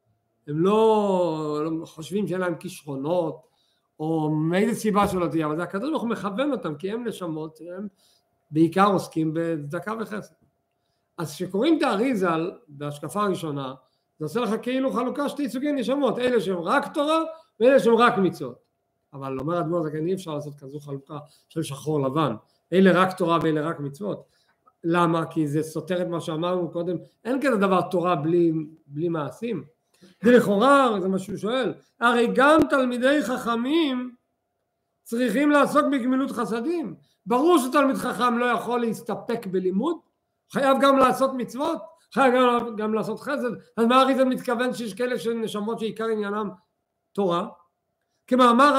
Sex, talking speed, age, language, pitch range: male, 150 wpm, 50-69, Hebrew, 165-250 Hz